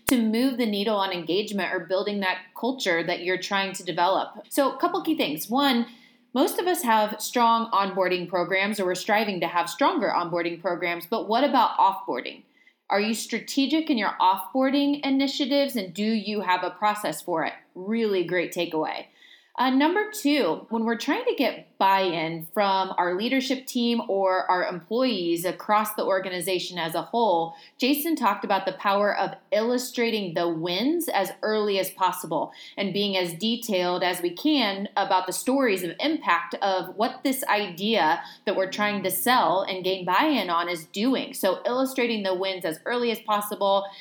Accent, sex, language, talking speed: American, female, English, 175 wpm